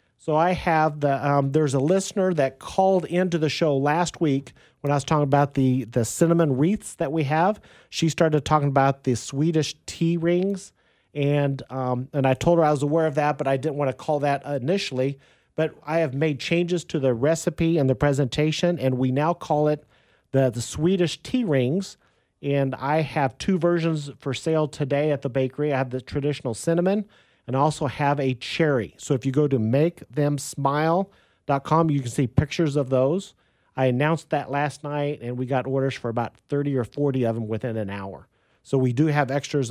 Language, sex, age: English, male, 40-59